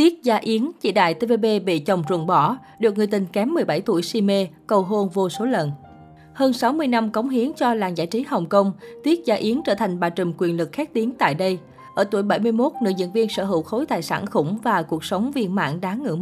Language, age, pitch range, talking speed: Vietnamese, 20-39, 180-235 Hz, 245 wpm